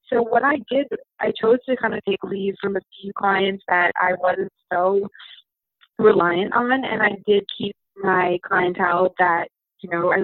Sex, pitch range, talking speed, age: female, 185-235 Hz, 180 wpm, 20-39